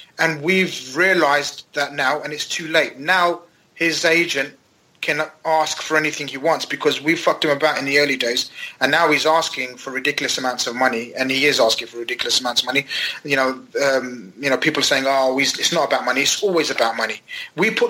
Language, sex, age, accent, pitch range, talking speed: English, male, 30-49, British, 150-190 Hz, 215 wpm